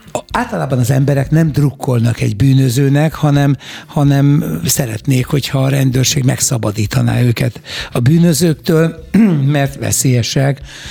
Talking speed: 105 wpm